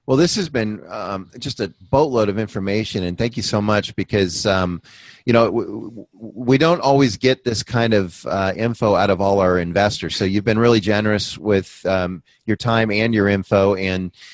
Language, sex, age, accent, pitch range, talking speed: English, male, 30-49, American, 100-120 Hz, 195 wpm